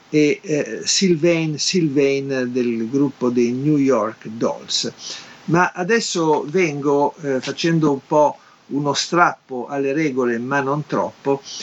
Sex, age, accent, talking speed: male, 50-69, native, 125 wpm